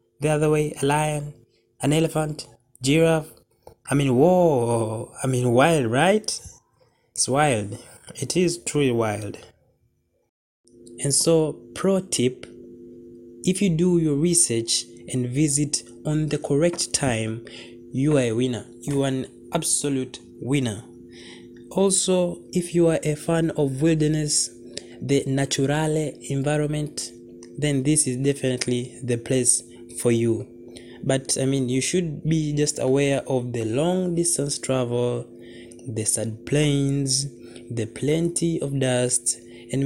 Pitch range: 120-150 Hz